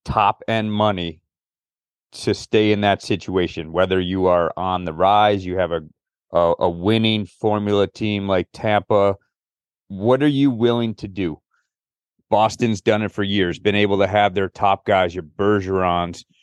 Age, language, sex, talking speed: 30-49, English, male, 160 wpm